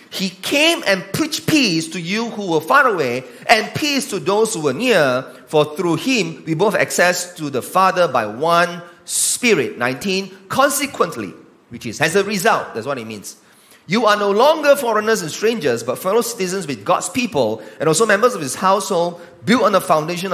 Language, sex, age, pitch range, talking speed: English, male, 30-49, 150-220 Hz, 190 wpm